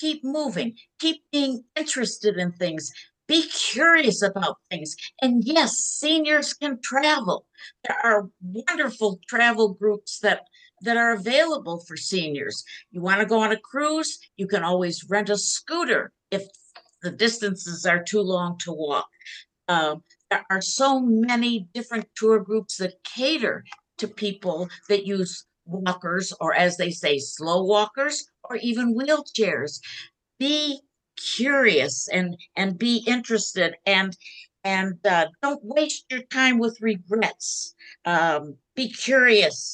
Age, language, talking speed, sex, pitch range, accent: 60-79, English, 135 wpm, female, 180-260 Hz, American